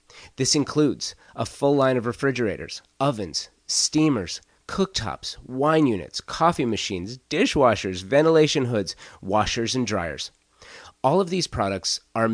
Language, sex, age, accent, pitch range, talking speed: English, male, 30-49, American, 95-125 Hz, 120 wpm